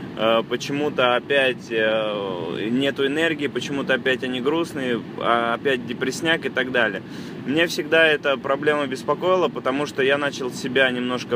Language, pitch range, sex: Russian, 125-145 Hz, male